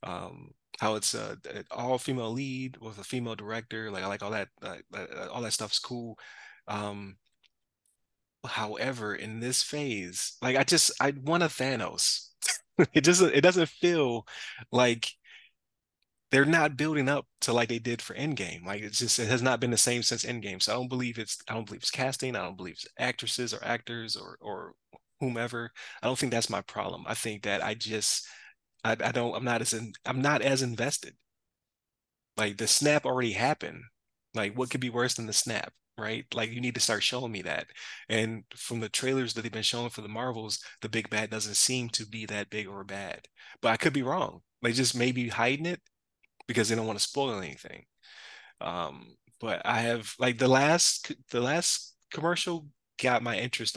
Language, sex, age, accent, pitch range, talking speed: English, male, 20-39, American, 110-130 Hz, 200 wpm